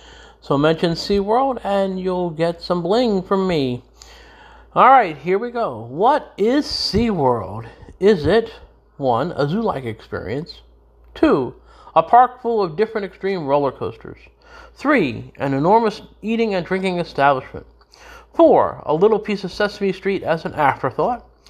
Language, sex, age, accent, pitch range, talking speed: English, male, 50-69, American, 145-205 Hz, 135 wpm